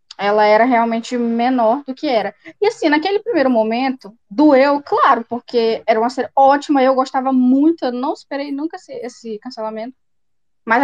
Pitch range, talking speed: 225-270 Hz, 165 wpm